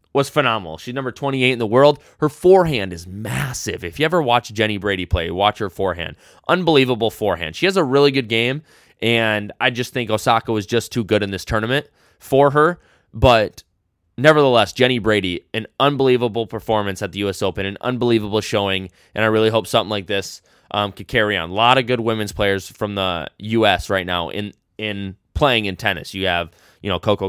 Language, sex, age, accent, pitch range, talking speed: English, male, 20-39, American, 95-120 Hz, 200 wpm